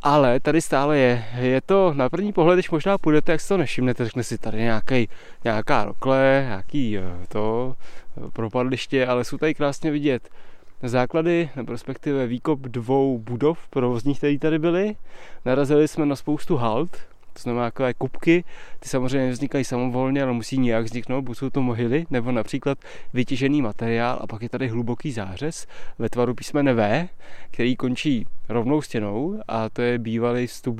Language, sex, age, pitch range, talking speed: Czech, male, 20-39, 115-145 Hz, 160 wpm